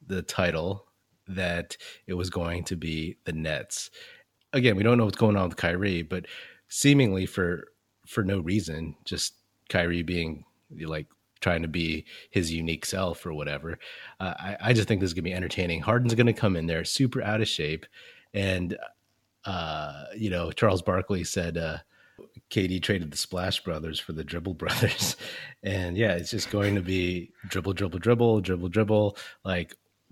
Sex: male